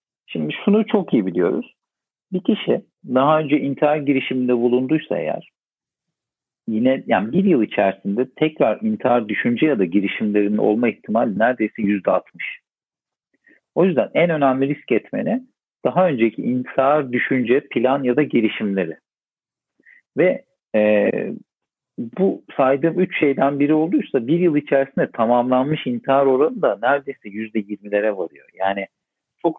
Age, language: 50-69, Turkish